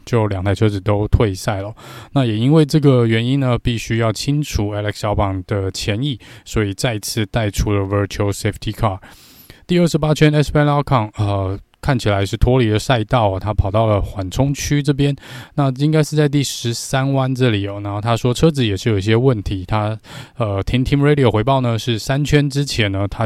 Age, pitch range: 20-39, 100-135 Hz